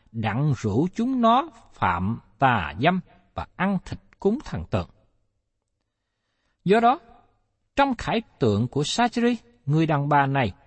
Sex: male